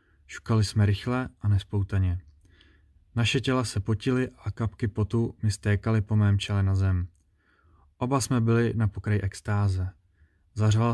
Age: 20-39